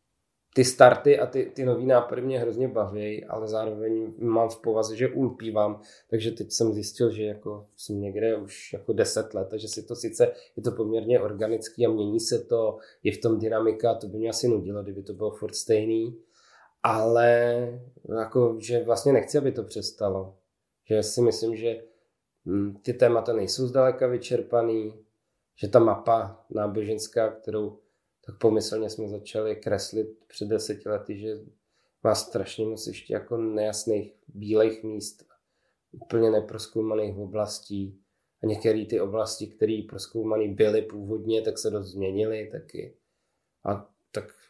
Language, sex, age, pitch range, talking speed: Czech, male, 20-39, 105-115 Hz, 150 wpm